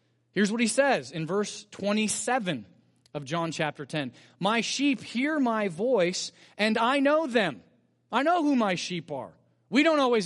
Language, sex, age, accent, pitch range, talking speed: English, male, 30-49, American, 155-225 Hz, 170 wpm